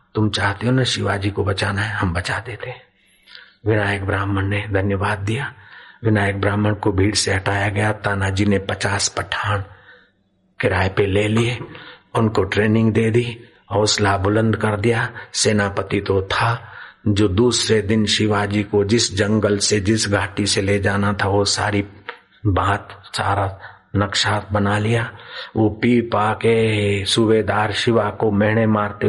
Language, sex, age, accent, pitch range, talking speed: Hindi, male, 50-69, native, 100-110 Hz, 105 wpm